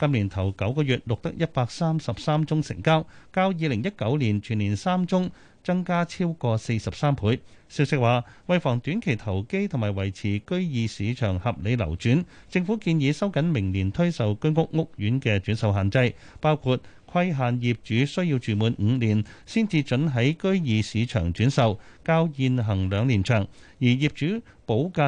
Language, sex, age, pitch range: Chinese, male, 30-49, 110-155 Hz